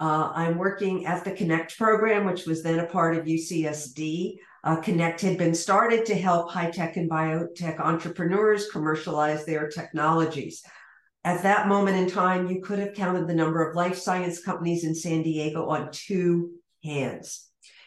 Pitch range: 165-210 Hz